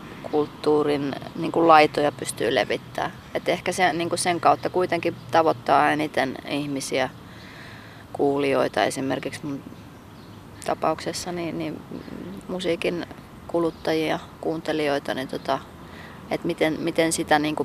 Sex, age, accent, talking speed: female, 30-49, native, 105 wpm